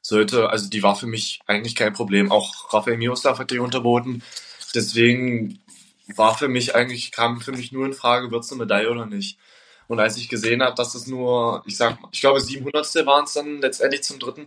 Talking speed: 210 wpm